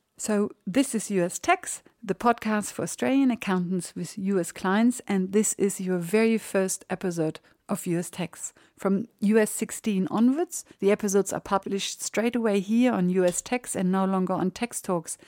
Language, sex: English, female